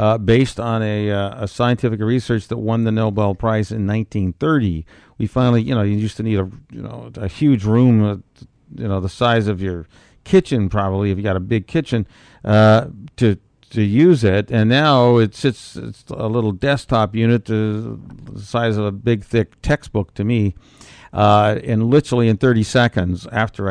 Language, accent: English, American